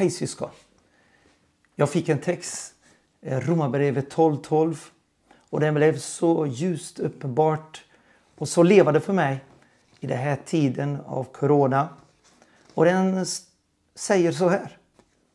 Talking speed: 115 wpm